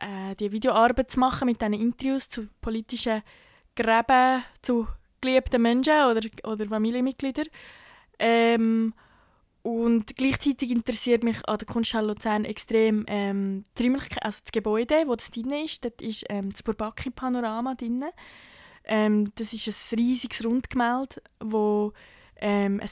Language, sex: German, female